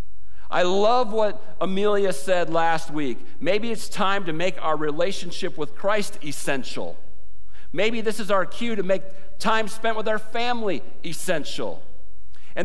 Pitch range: 170-225 Hz